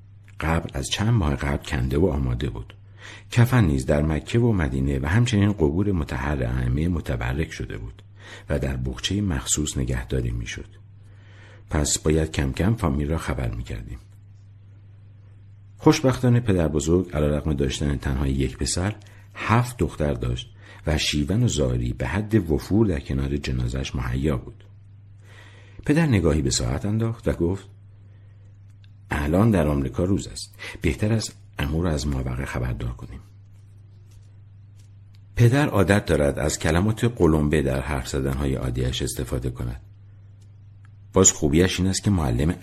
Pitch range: 70-100 Hz